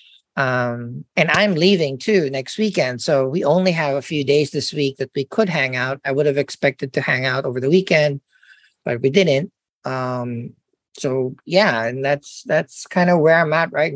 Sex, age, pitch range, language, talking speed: male, 40-59, 135-175 Hz, English, 200 wpm